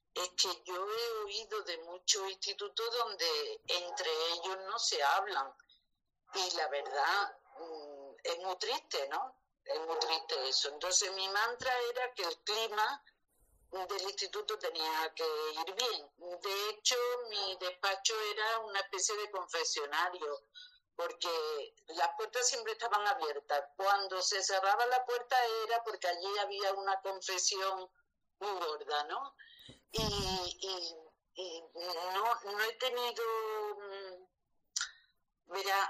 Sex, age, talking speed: female, 50-69, 125 wpm